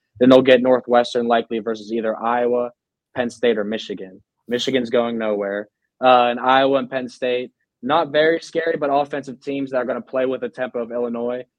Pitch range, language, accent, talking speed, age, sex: 120-135 Hz, English, American, 190 wpm, 20-39, male